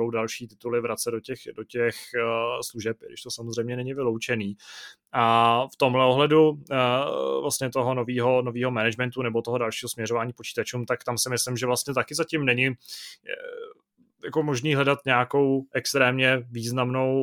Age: 20-39